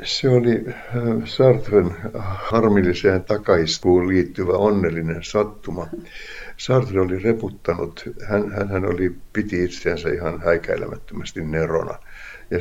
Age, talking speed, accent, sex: 60-79, 90 wpm, native, male